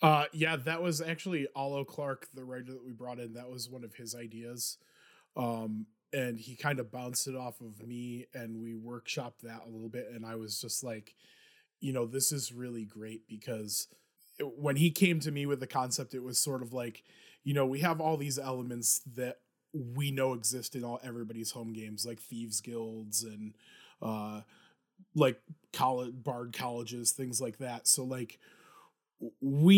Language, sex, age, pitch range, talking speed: English, male, 20-39, 120-145 Hz, 185 wpm